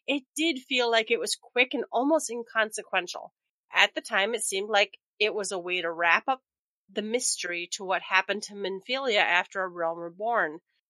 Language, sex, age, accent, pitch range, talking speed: English, female, 30-49, American, 195-255 Hz, 185 wpm